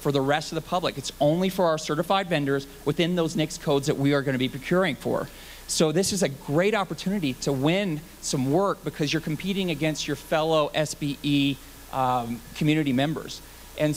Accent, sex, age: American, male, 40-59